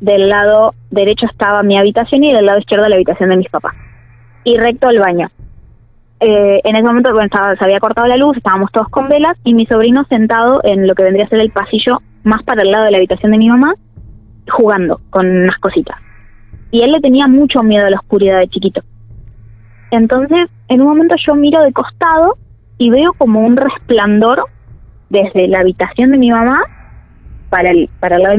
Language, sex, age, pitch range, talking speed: Spanish, female, 20-39, 195-255 Hz, 205 wpm